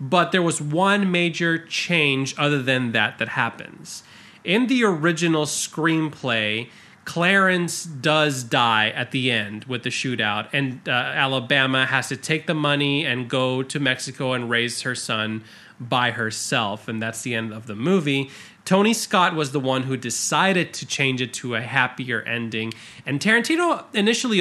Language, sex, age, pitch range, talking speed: English, male, 30-49, 125-175 Hz, 160 wpm